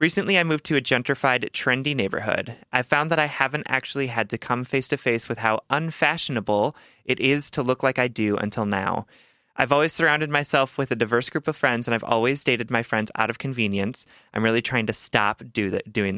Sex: male